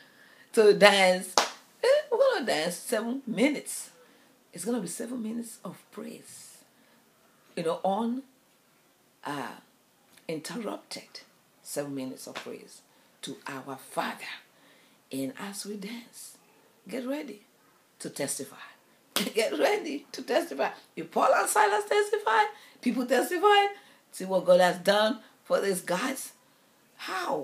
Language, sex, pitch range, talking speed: English, female, 180-265 Hz, 120 wpm